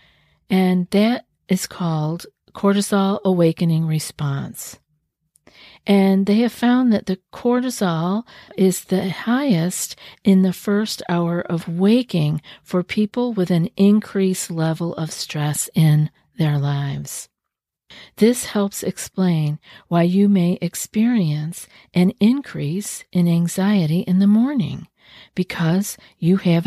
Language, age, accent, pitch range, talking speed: English, 50-69, American, 165-200 Hz, 115 wpm